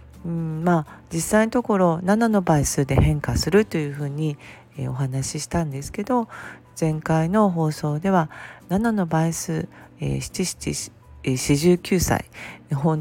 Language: Japanese